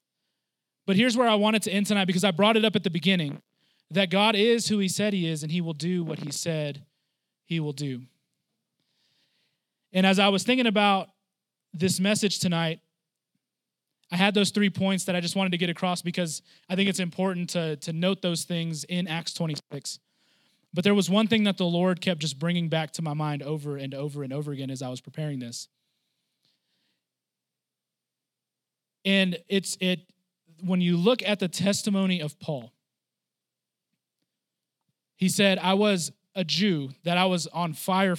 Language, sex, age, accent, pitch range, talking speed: English, male, 20-39, American, 160-195 Hz, 180 wpm